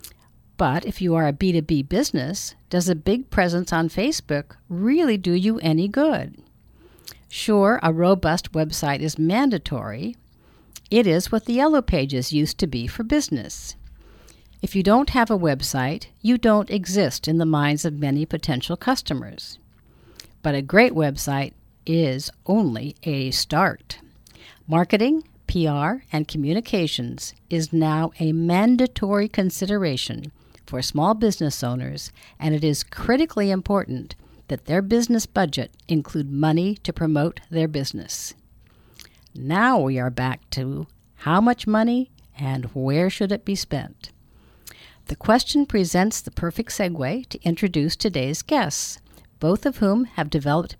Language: English